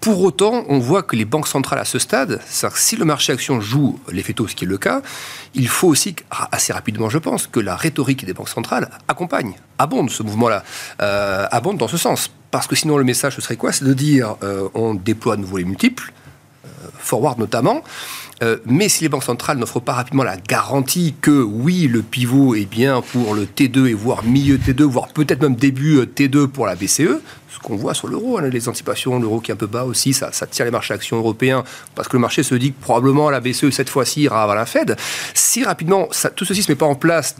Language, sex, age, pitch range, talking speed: French, male, 40-59, 115-150 Hz, 235 wpm